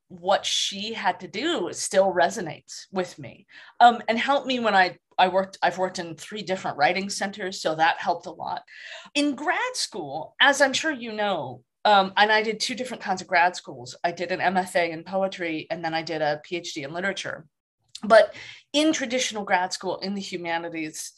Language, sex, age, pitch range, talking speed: English, female, 30-49, 185-260 Hz, 195 wpm